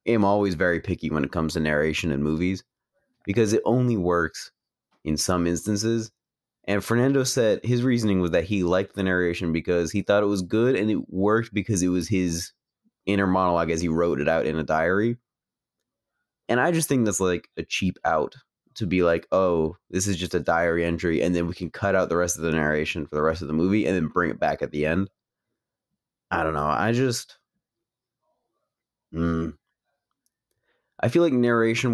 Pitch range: 85-110 Hz